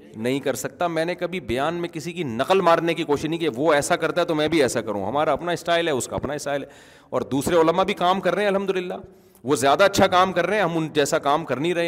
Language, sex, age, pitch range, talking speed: Urdu, male, 30-49, 125-170 Hz, 290 wpm